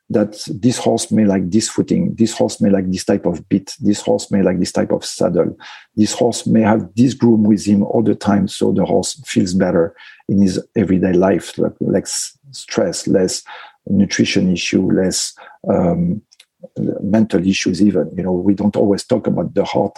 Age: 50-69